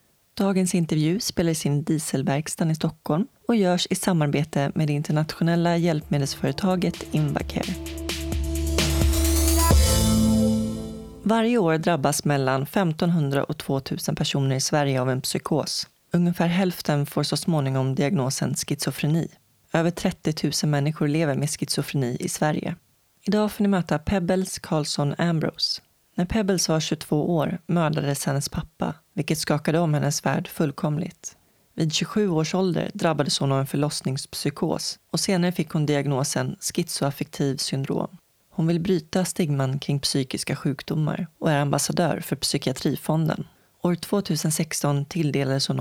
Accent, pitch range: native, 140-175 Hz